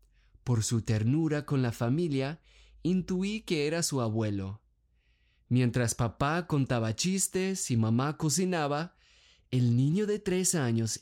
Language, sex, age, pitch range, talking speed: Spanish, male, 30-49, 110-165 Hz, 125 wpm